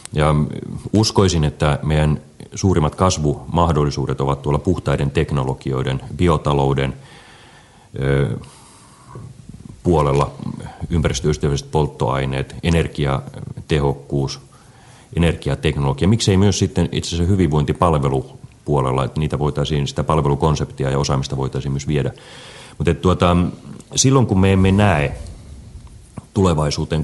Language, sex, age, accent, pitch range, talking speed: Finnish, male, 30-49, native, 70-90 Hz, 90 wpm